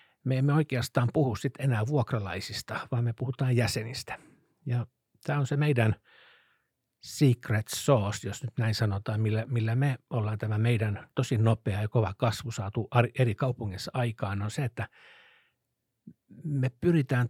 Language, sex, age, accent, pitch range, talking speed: Finnish, male, 60-79, native, 105-130 Hz, 140 wpm